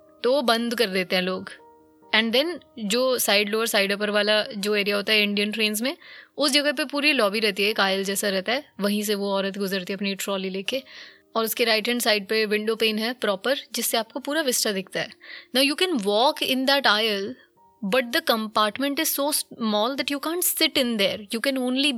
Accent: native